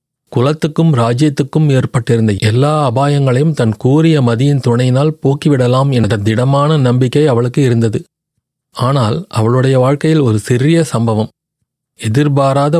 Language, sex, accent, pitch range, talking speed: Tamil, male, native, 120-150 Hz, 105 wpm